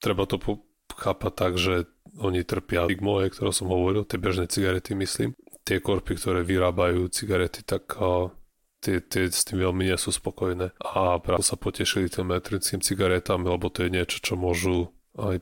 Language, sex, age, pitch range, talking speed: Slovak, male, 20-39, 90-95 Hz, 170 wpm